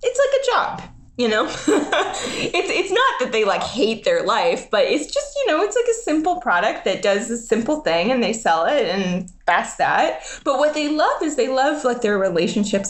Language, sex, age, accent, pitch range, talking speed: English, female, 20-39, American, 185-285 Hz, 220 wpm